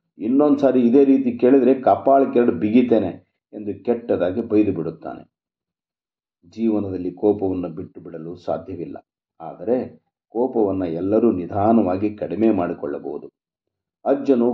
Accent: native